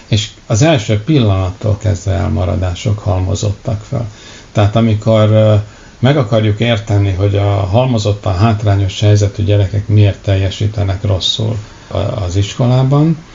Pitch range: 100-120 Hz